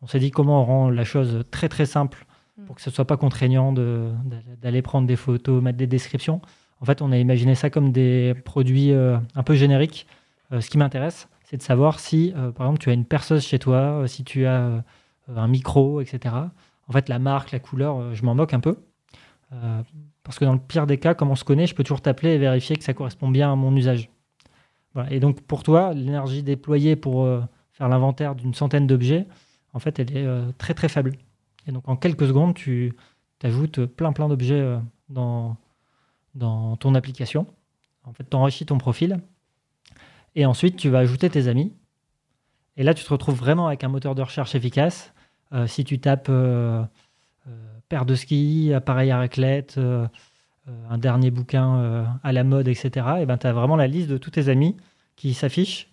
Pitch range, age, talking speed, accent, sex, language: 125-145 Hz, 20-39, 200 wpm, French, male, French